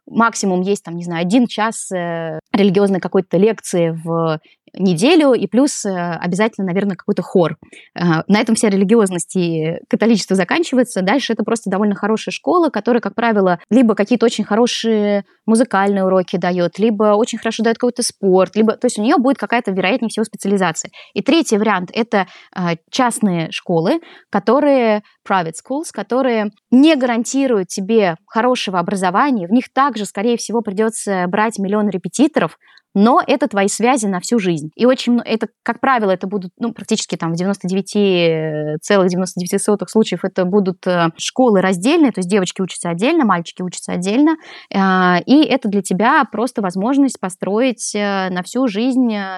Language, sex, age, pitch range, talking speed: Russian, female, 20-39, 185-235 Hz, 155 wpm